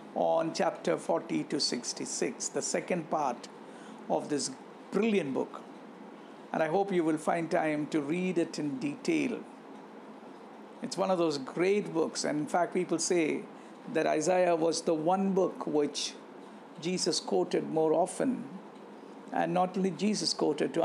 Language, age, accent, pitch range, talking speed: English, 60-79, Indian, 160-210 Hz, 150 wpm